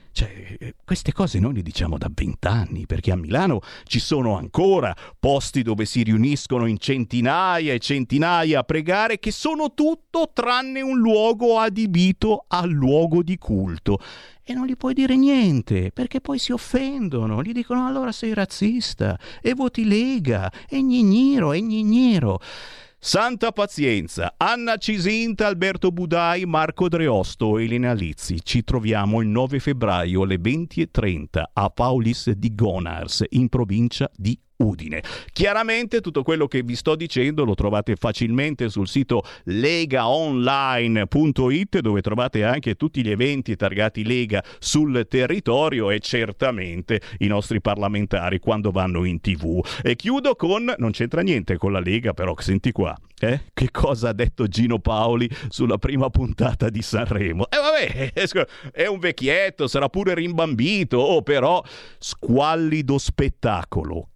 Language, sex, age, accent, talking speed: Italian, male, 50-69, native, 140 wpm